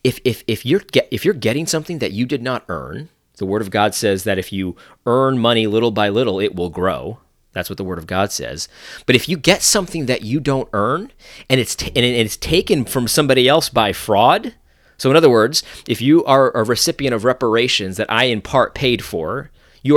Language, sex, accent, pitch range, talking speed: English, male, American, 95-130 Hz, 225 wpm